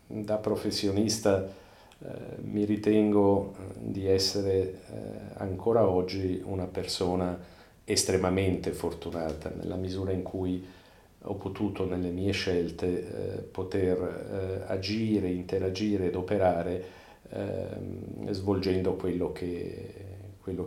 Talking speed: 95 wpm